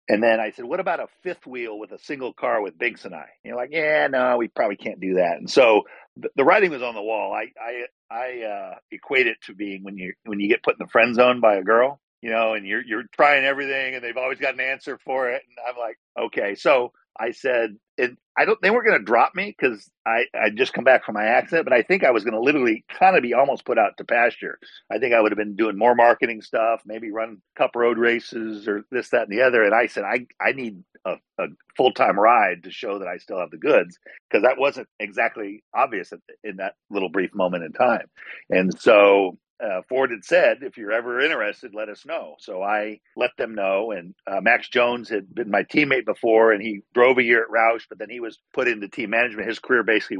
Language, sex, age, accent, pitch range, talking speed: English, male, 50-69, American, 100-120 Hz, 250 wpm